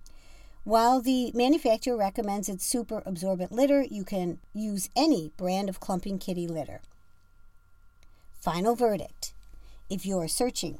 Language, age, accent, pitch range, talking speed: English, 50-69, American, 170-245 Hz, 120 wpm